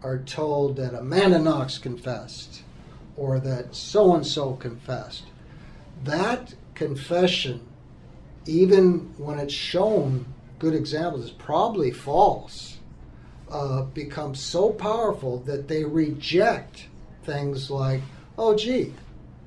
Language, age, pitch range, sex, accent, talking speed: English, 60-79, 135-175 Hz, male, American, 100 wpm